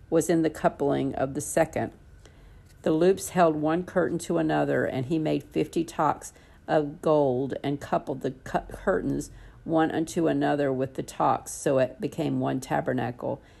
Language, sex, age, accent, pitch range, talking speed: English, female, 50-69, American, 135-160 Hz, 160 wpm